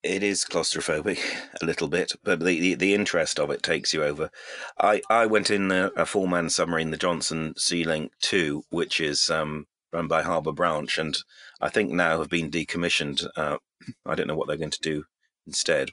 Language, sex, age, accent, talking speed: English, male, 30-49, British, 205 wpm